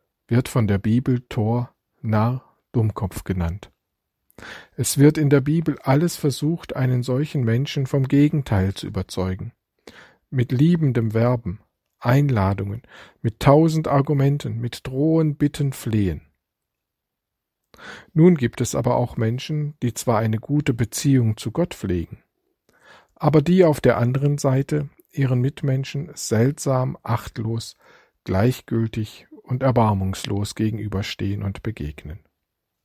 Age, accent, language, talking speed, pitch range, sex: 50-69, German, German, 115 wpm, 110-140 Hz, male